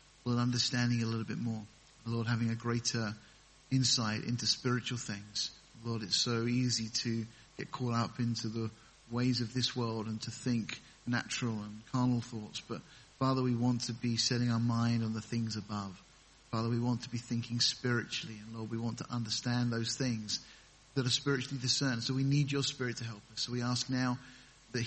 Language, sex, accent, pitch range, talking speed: English, male, British, 115-130 Hz, 195 wpm